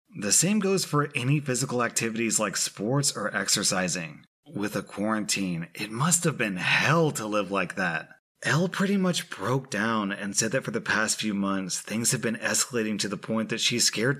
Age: 30-49